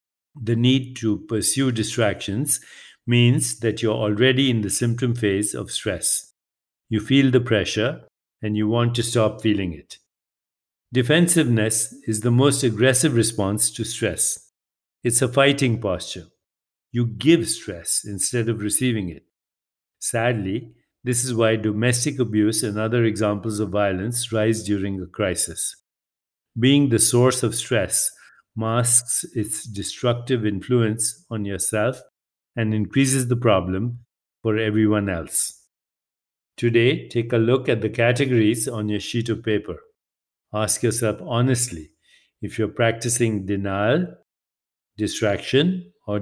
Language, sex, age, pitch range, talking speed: English, male, 50-69, 105-120 Hz, 130 wpm